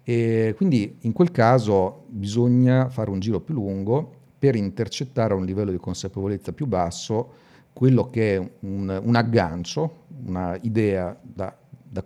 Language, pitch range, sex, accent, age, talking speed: Italian, 95-120 Hz, male, native, 50-69, 145 wpm